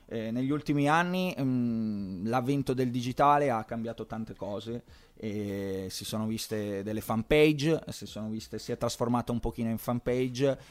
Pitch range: 110-140 Hz